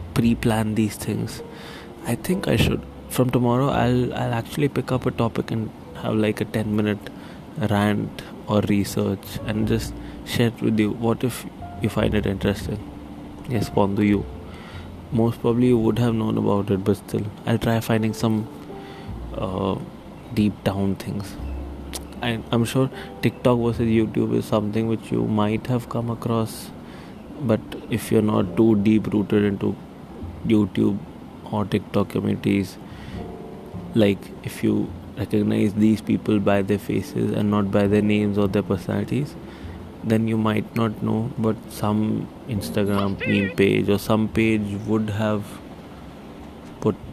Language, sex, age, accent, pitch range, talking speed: English, male, 20-39, Indian, 100-115 Hz, 150 wpm